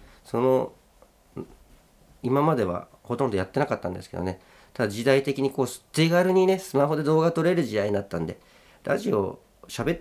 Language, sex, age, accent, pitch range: Japanese, male, 40-59, native, 100-140 Hz